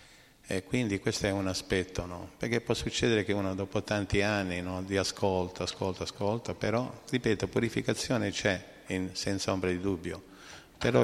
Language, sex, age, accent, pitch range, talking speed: Italian, male, 50-69, native, 90-105 Hz, 165 wpm